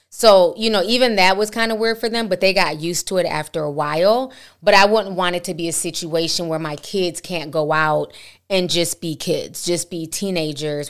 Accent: American